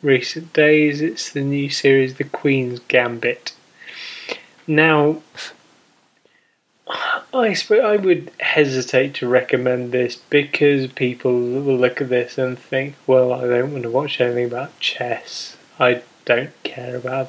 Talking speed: 135 wpm